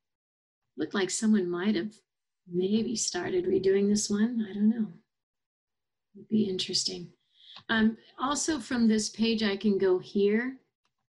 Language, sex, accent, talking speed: English, female, American, 135 wpm